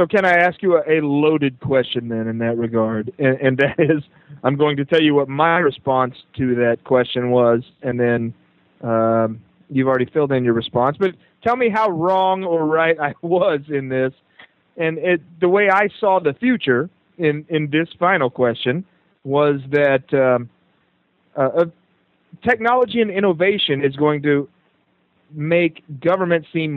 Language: English